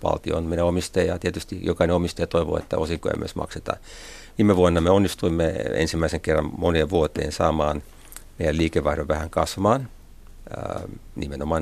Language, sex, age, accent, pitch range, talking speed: Finnish, male, 50-69, native, 75-90 Hz, 140 wpm